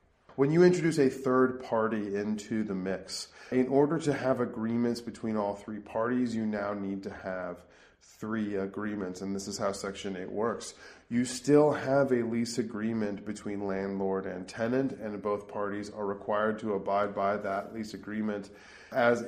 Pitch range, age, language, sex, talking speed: 100-120 Hz, 30-49, English, male, 170 wpm